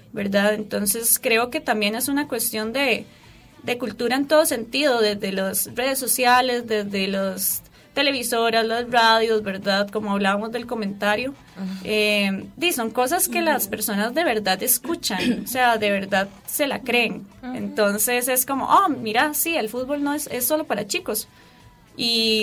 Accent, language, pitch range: Colombian, Spanish, 205-260 Hz